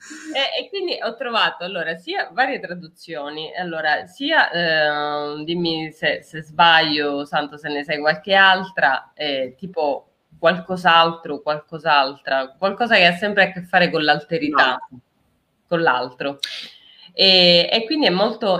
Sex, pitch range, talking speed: female, 145-180 Hz, 135 wpm